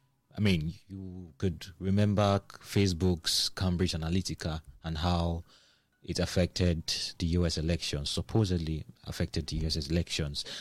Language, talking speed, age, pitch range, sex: English, 115 wpm, 30-49, 90-120 Hz, male